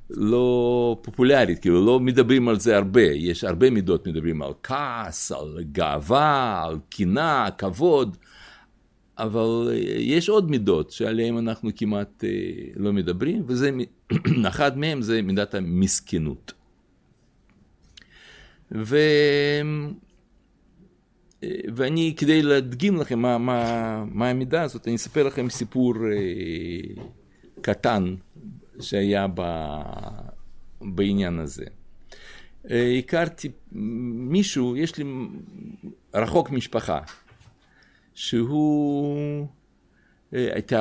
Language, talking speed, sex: Hebrew, 90 wpm, male